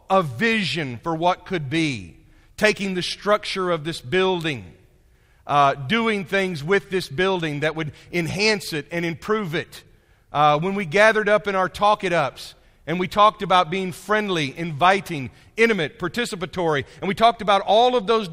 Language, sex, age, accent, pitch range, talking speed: English, male, 40-59, American, 150-210 Hz, 160 wpm